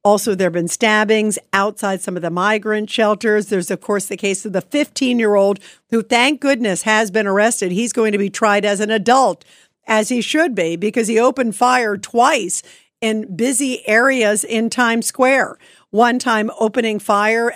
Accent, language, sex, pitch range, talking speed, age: American, English, female, 205-255 Hz, 180 wpm, 50-69